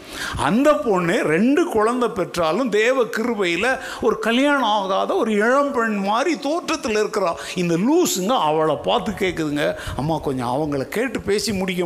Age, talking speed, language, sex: 60-79, 100 wpm, Tamil, male